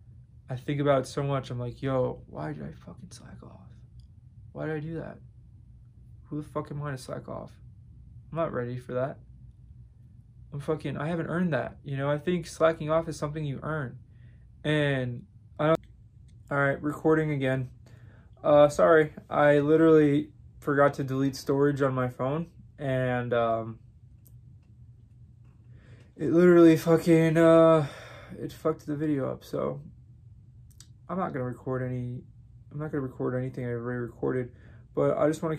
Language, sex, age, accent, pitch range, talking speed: English, male, 20-39, American, 120-150 Hz, 165 wpm